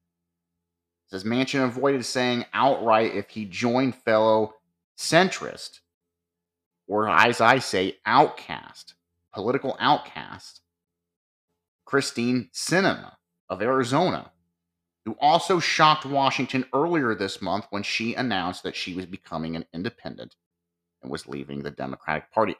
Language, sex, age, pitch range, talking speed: English, male, 30-49, 85-130 Hz, 115 wpm